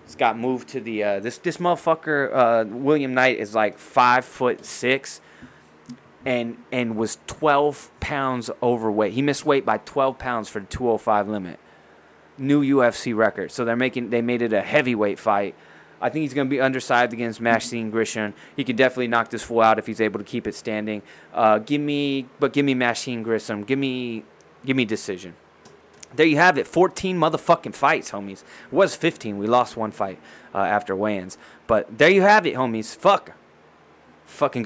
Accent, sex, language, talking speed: American, male, English, 185 wpm